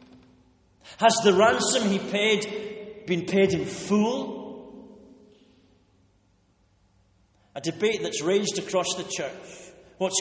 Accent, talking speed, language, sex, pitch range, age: British, 100 wpm, English, male, 145-210 Hz, 60-79